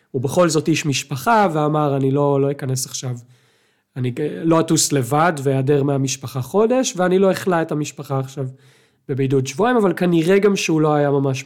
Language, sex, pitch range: Hebrew, male, 135-170 Hz